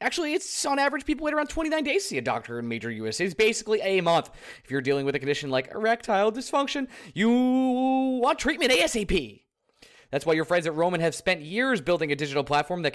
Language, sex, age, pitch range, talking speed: English, male, 20-39, 140-200 Hz, 220 wpm